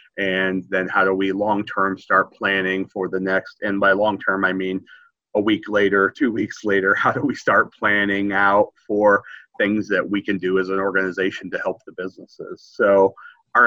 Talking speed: 190 wpm